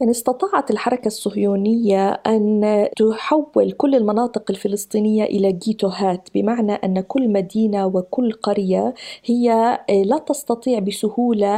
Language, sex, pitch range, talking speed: Arabic, female, 200-245 Hz, 110 wpm